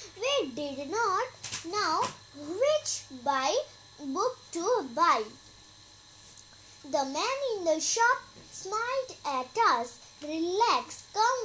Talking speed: 100 wpm